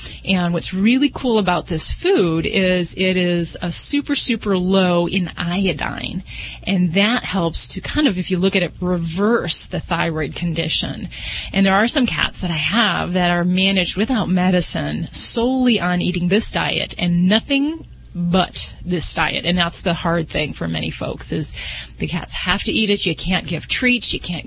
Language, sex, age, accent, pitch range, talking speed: English, female, 30-49, American, 170-205 Hz, 185 wpm